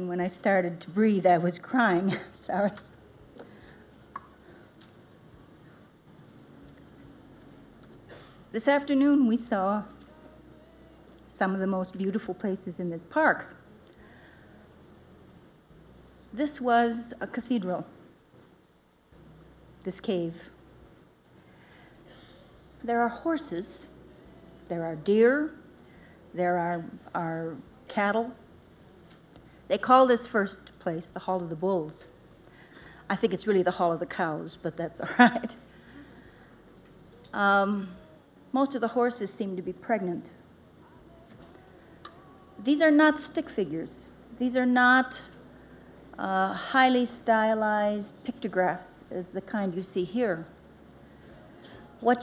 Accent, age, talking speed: American, 50-69, 100 wpm